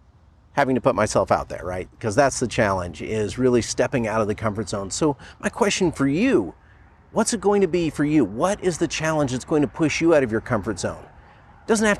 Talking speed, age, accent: 240 wpm, 40-59, American